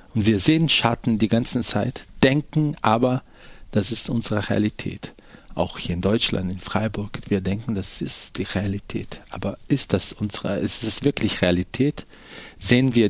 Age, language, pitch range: 40-59, German, 105-135 Hz